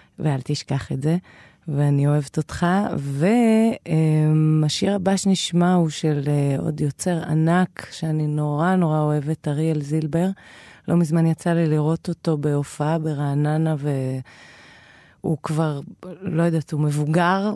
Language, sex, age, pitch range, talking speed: Hebrew, female, 30-49, 150-170 Hz, 125 wpm